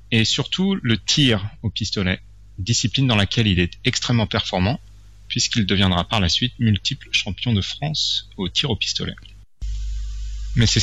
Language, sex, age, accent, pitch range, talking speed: French, male, 30-49, French, 100-130 Hz, 155 wpm